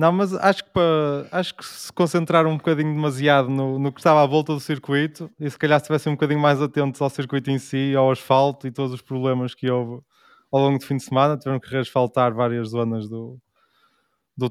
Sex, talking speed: male, 210 wpm